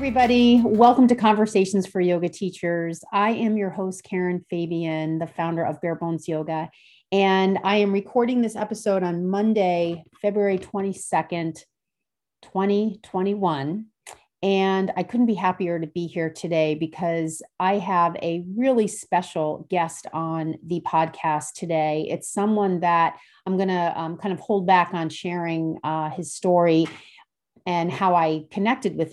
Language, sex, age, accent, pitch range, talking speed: English, female, 30-49, American, 160-195 Hz, 145 wpm